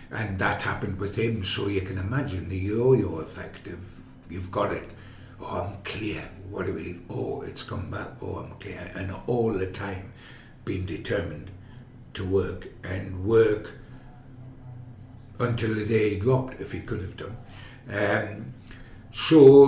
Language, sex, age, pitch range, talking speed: English, male, 60-79, 95-125 Hz, 155 wpm